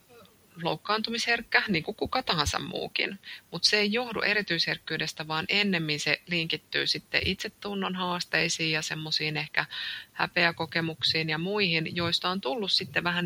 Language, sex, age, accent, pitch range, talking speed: Finnish, female, 30-49, native, 150-190 Hz, 130 wpm